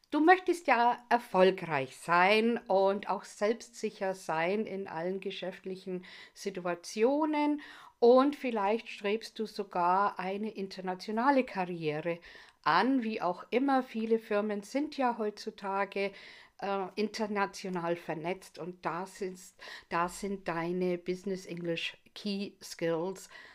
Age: 50-69